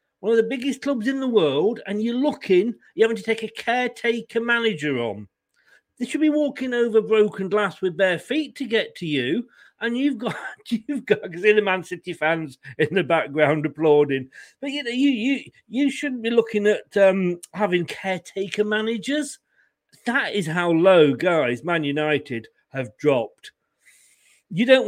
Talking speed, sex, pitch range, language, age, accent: 175 wpm, male, 155-225 Hz, English, 40-59, British